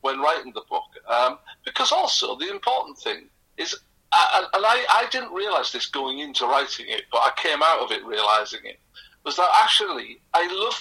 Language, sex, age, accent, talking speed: English, male, 50-69, British, 195 wpm